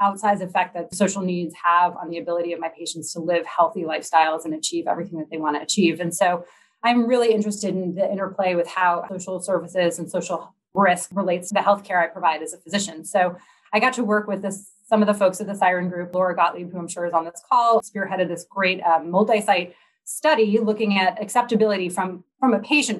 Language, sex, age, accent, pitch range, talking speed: English, female, 30-49, American, 175-215 Hz, 220 wpm